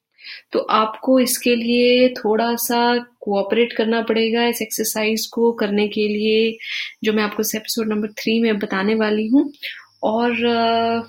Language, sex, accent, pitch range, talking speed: English, female, Indian, 215-240 Hz, 145 wpm